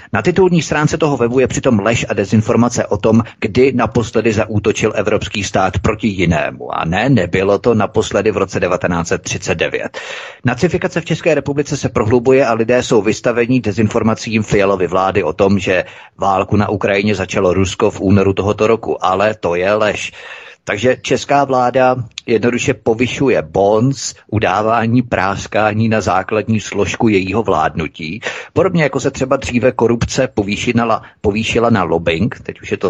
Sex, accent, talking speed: male, native, 150 wpm